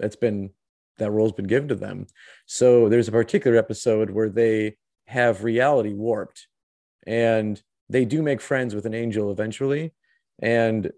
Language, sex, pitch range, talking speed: English, male, 105-120 Hz, 160 wpm